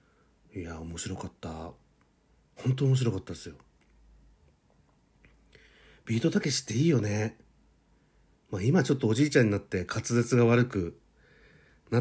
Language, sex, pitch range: Japanese, male, 90-130 Hz